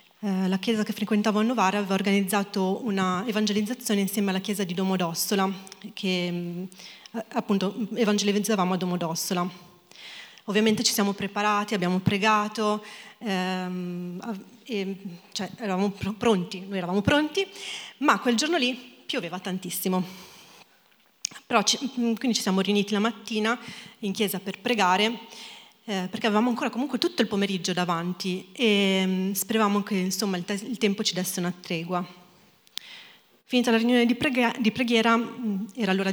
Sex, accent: female, native